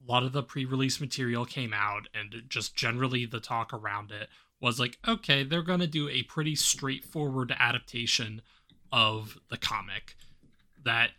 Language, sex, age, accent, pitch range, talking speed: English, male, 20-39, American, 110-140 Hz, 160 wpm